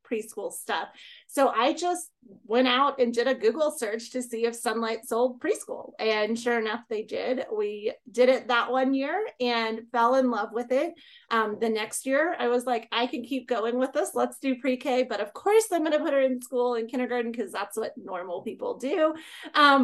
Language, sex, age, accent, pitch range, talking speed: English, female, 30-49, American, 220-270 Hz, 210 wpm